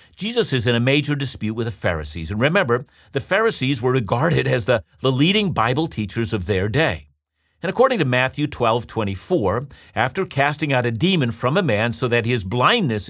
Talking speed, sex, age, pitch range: 190 wpm, male, 50-69, 110-150 Hz